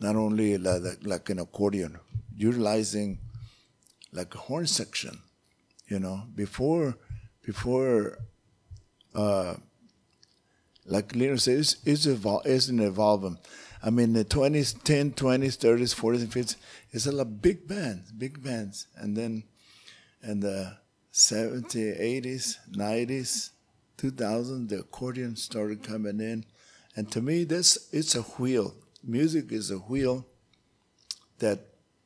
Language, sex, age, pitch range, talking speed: English, male, 50-69, 100-125 Hz, 130 wpm